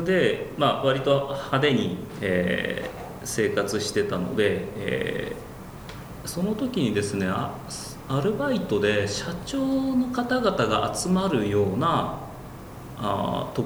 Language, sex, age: Japanese, male, 40-59